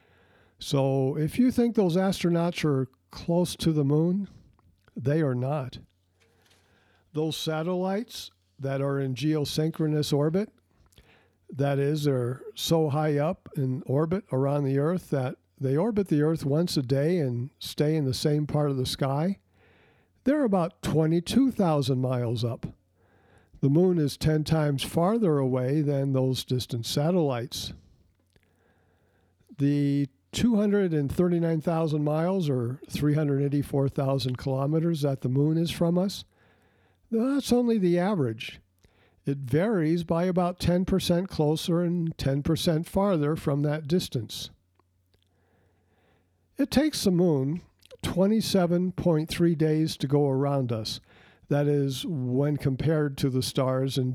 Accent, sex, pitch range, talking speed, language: American, male, 130-170 Hz, 125 wpm, English